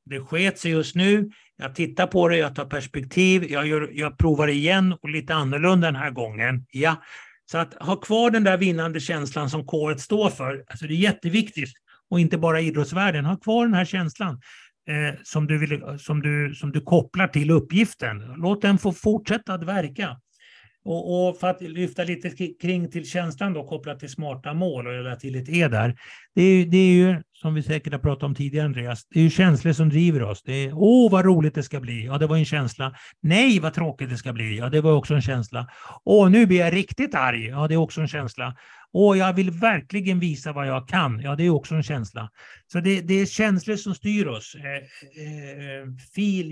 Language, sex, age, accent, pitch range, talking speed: English, male, 60-79, Swedish, 145-185 Hz, 210 wpm